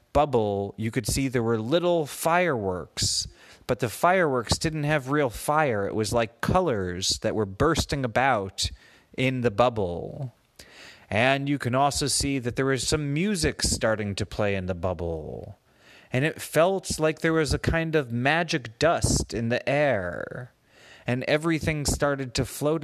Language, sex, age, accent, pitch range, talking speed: English, male, 30-49, American, 110-165 Hz, 160 wpm